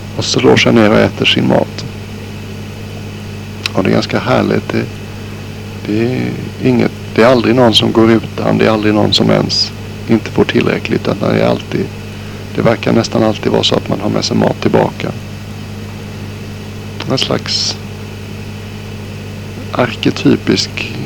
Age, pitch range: 60-79, 105-110 Hz